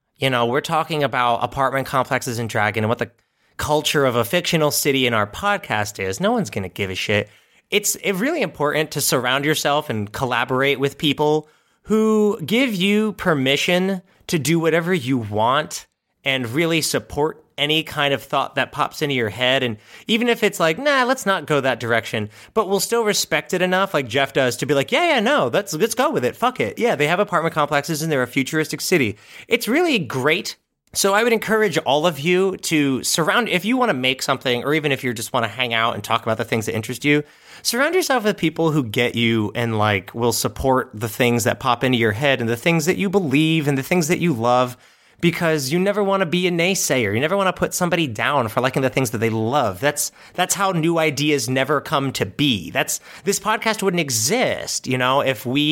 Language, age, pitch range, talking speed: English, 30-49, 125-180 Hz, 225 wpm